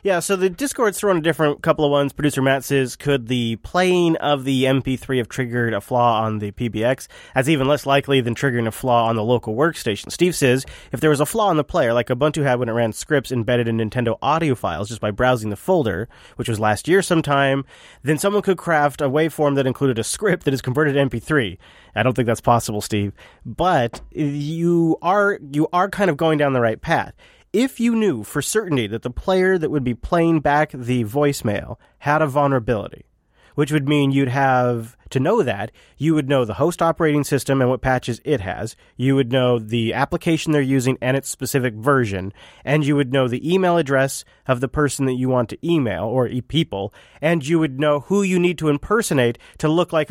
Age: 30-49